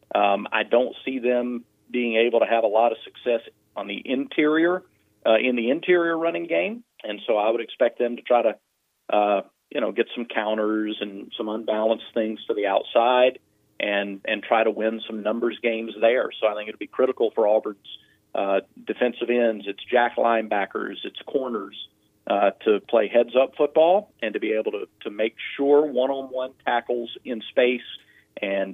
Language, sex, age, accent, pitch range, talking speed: English, male, 40-59, American, 105-135 Hz, 185 wpm